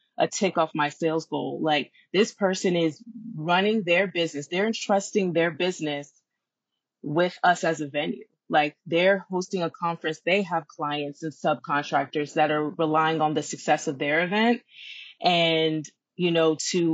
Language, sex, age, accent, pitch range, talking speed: English, female, 20-39, American, 160-205 Hz, 160 wpm